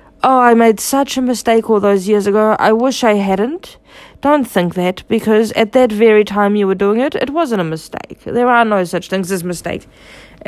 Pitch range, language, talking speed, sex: 190-240 Hz, English, 210 wpm, female